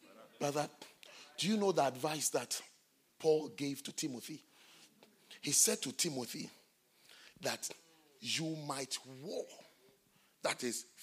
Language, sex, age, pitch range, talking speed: English, male, 50-69, 180-300 Hz, 115 wpm